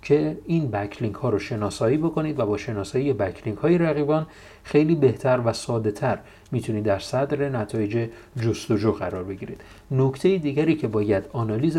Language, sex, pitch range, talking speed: Persian, male, 105-145 Hz, 155 wpm